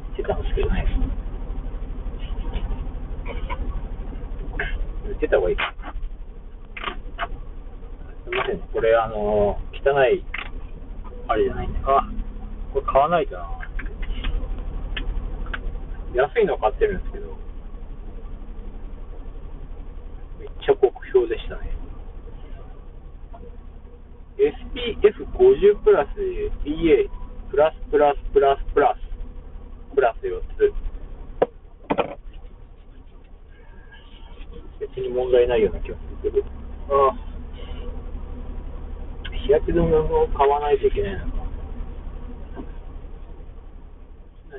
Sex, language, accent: male, Japanese, native